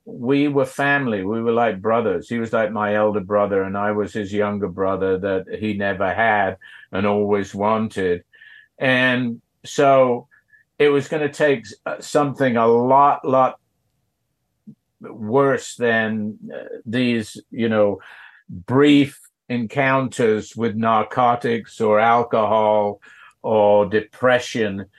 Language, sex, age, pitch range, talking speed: English, male, 60-79, 105-130 Hz, 120 wpm